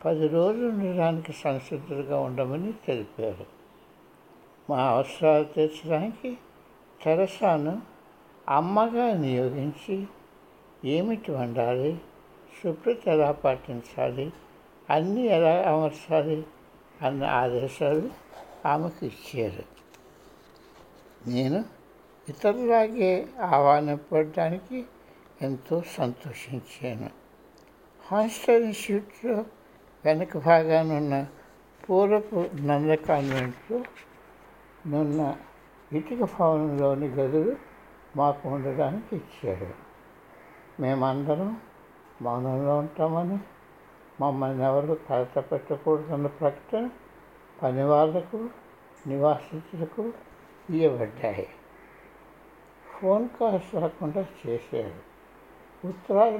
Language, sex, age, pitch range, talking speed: Telugu, male, 60-79, 145-195 Hz, 65 wpm